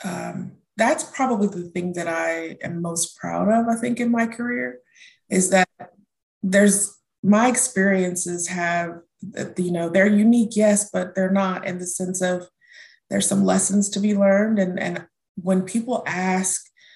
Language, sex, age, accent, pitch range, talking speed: English, female, 20-39, American, 175-205 Hz, 160 wpm